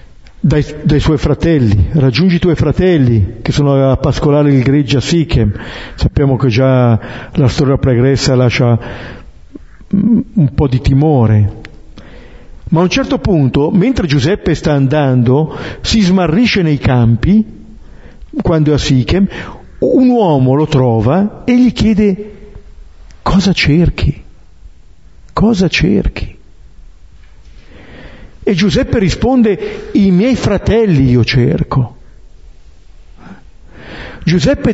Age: 50-69